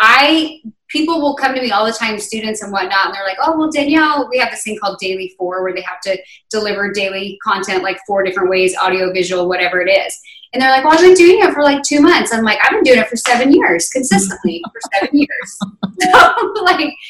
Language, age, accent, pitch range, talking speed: English, 20-39, American, 200-280 Hz, 240 wpm